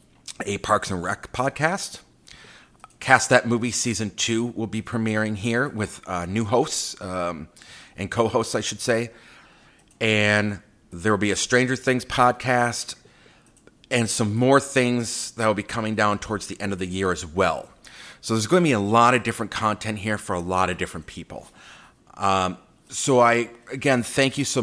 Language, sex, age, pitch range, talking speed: English, male, 40-59, 95-115 Hz, 180 wpm